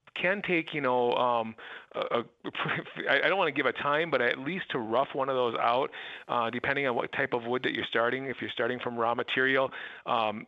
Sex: male